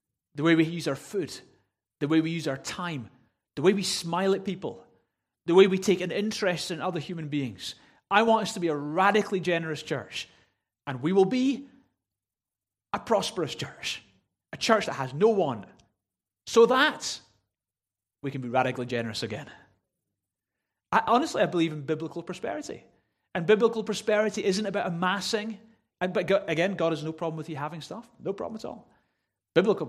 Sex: male